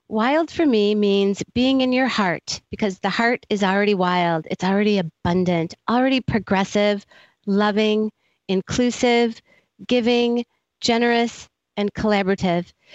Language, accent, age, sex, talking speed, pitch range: English, American, 40-59, female, 115 wpm, 190-240 Hz